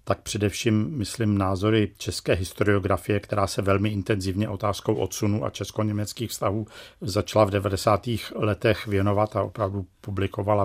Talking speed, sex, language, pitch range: 130 wpm, male, Czech, 100-110 Hz